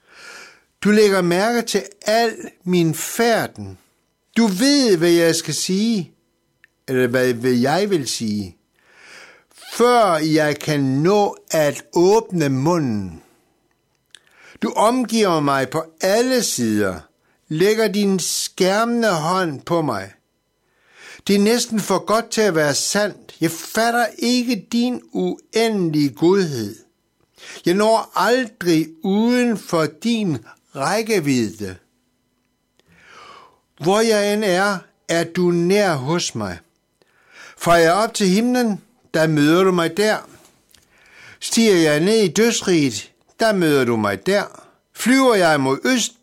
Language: Danish